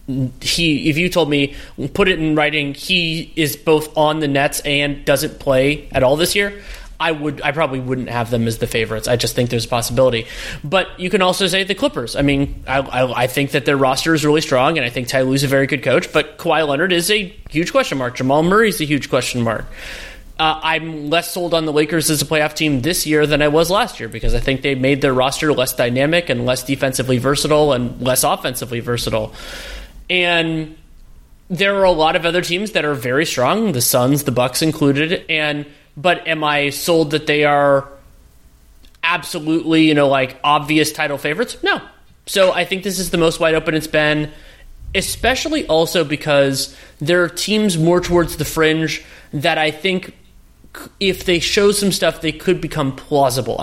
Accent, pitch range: American, 135-165 Hz